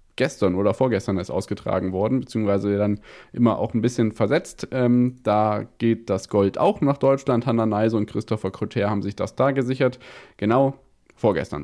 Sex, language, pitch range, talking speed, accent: male, German, 105-130 Hz, 170 wpm, German